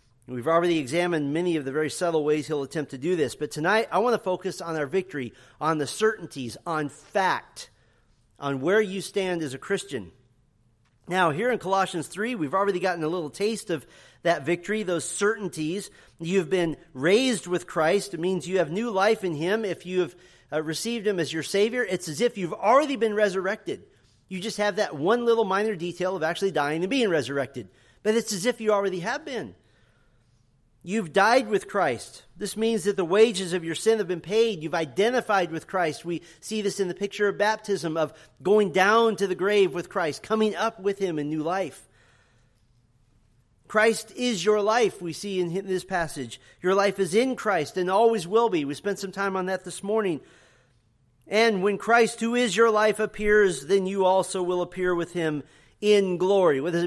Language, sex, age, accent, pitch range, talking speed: English, male, 40-59, American, 155-210 Hz, 200 wpm